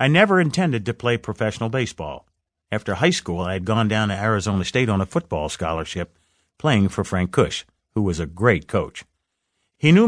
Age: 50-69